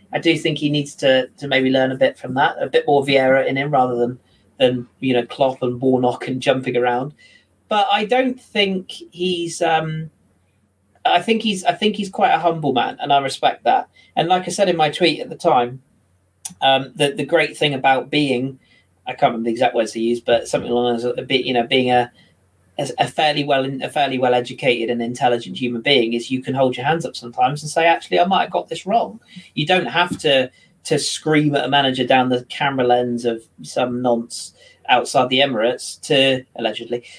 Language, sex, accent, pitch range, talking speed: English, male, British, 125-170 Hz, 215 wpm